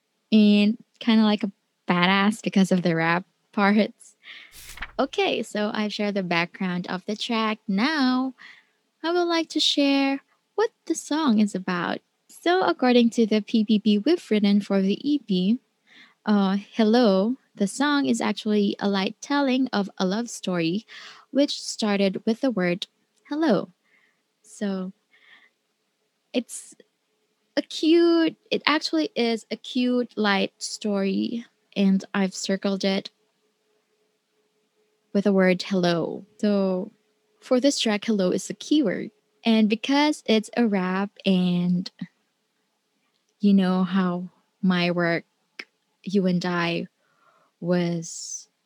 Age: 20-39